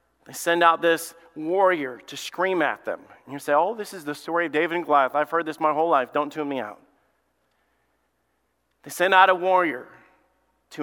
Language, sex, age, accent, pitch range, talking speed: English, male, 40-59, American, 155-190 Hz, 205 wpm